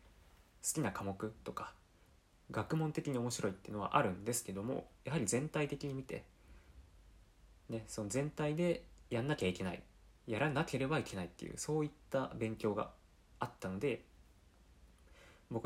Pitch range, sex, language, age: 95-140 Hz, male, Japanese, 20-39